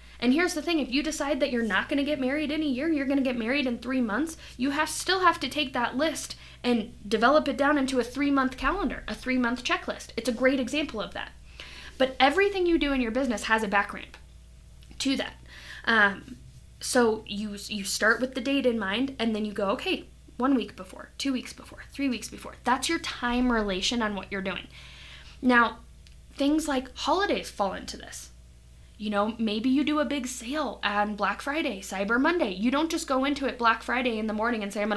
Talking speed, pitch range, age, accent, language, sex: 220 wpm, 210-280 Hz, 10-29, American, English, female